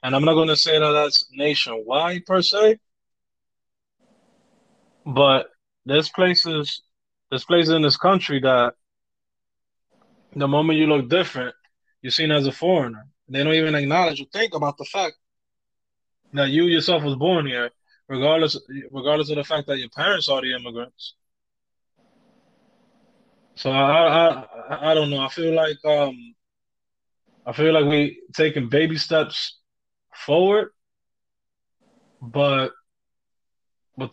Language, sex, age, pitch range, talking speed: English, male, 20-39, 130-165 Hz, 130 wpm